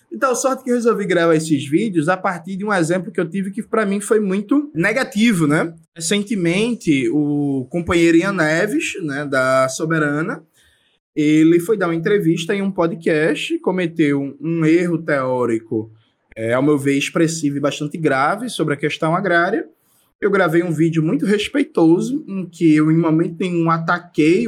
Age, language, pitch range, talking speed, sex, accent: 20-39, Portuguese, 150-210 Hz, 165 wpm, male, Brazilian